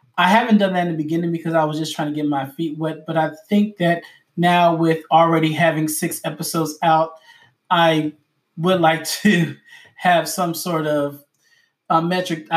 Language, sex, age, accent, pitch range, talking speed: English, male, 20-39, American, 155-180 Hz, 175 wpm